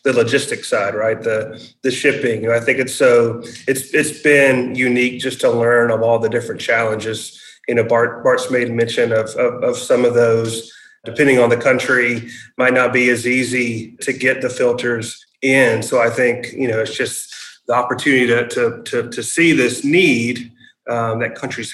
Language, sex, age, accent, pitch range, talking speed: English, male, 30-49, American, 115-130 Hz, 195 wpm